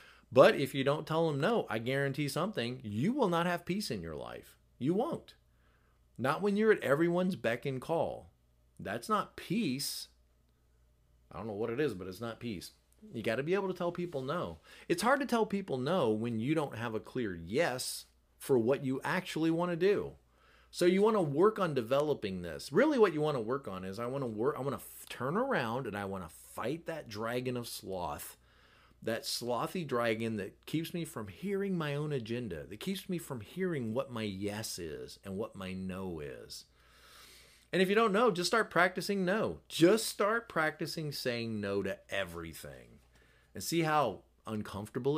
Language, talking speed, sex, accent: English, 200 wpm, male, American